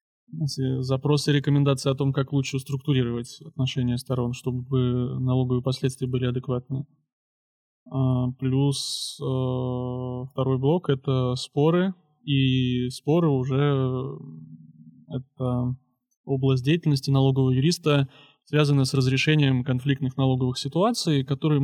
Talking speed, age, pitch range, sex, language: 105 wpm, 20-39, 130-145 Hz, male, Russian